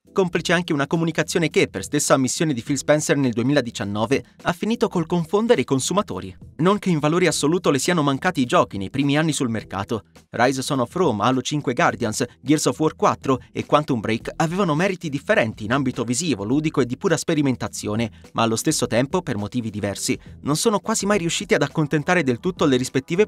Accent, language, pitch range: native, Italian, 125-175 Hz